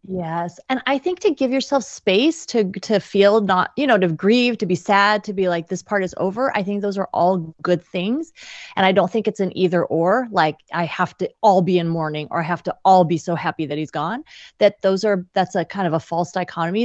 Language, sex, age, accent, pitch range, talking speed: English, female, 30-49, American, 190-265 Hz, 250 wpm